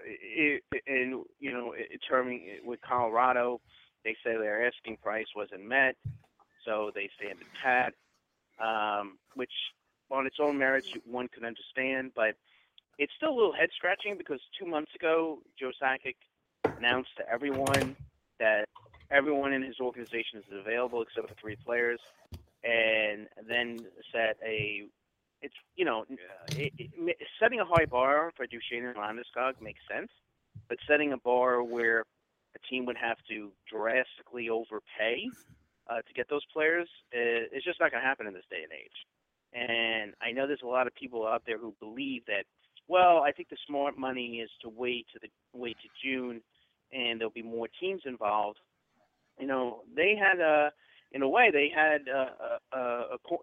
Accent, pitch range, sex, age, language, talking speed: American, 115-145 Hz, male, 30-49, English, 165 wpm